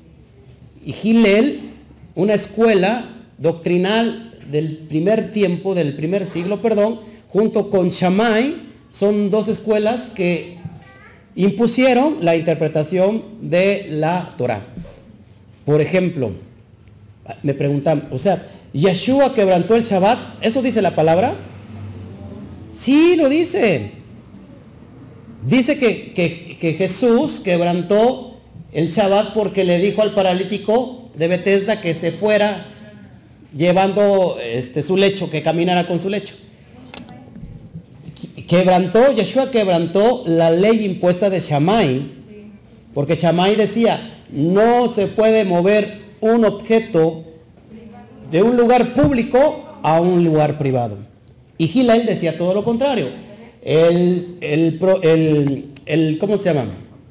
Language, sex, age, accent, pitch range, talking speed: Spanish, male, 40-59, Mexican, 150-215 Hz, 110 wpm